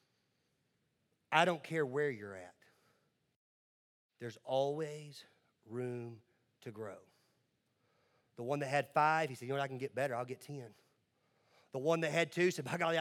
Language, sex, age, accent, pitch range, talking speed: English, male, 40-59, American, 125-190 Hz, 165 wpm